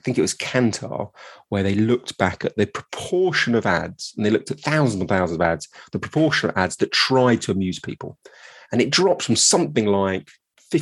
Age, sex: 30-49, male